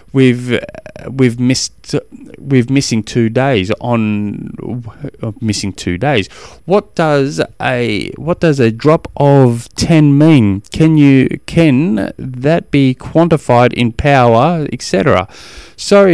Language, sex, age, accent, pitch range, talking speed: English, male, 20-39, Australian, 115-155 Hz, 115 wpm